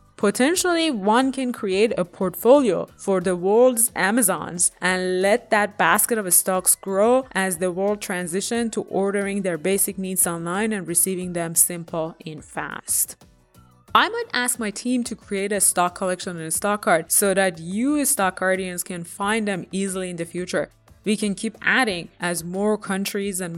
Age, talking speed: 20-39, 170 wpm